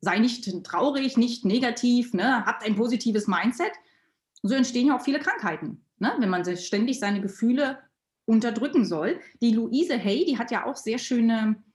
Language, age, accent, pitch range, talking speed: German, 30-49, German, 200-265 Hz, 175 wpm